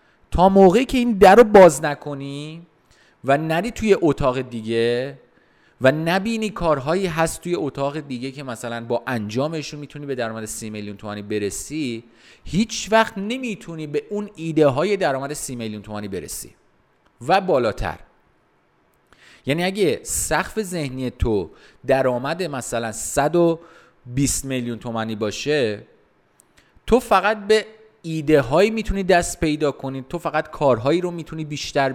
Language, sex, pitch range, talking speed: Persian, male, 125-175 Hz, 135 wpm